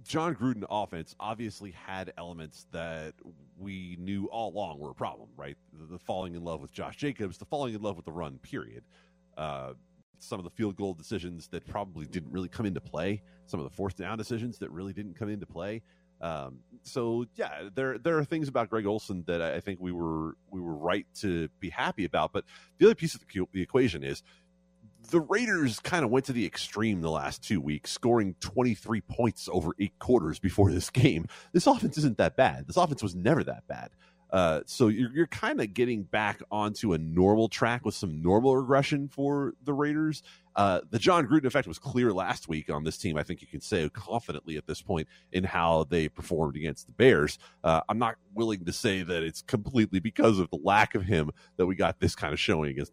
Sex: male